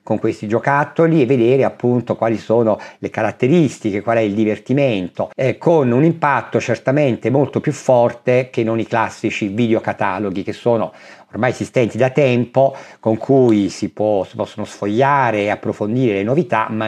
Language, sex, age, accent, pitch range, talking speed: Italian, male, 50-69, native, 105-130 Hz, 155 wpm